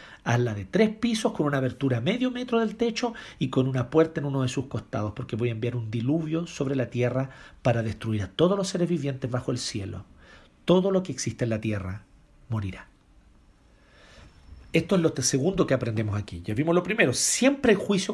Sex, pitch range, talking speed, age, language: male, 125-195 Hz, 210 wpm, 40-59, Spanish